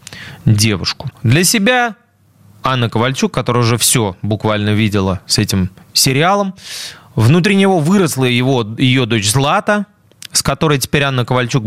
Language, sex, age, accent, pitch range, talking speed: Russian, male, 20-39, native, 105-150 Hz, 120 wpm